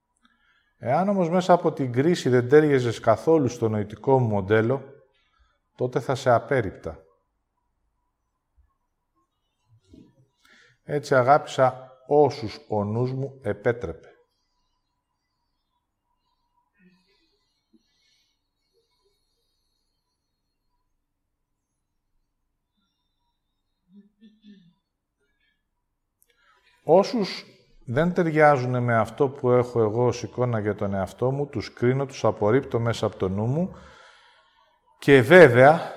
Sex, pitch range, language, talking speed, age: male, 110-150 Hz, English, 80 wpm, 50-69